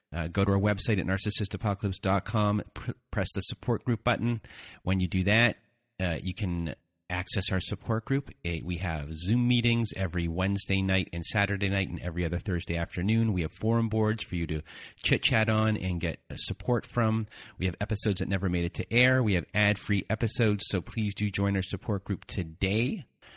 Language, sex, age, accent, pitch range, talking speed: English, male, 30-49, American, 90-110 Hz, 190 wpm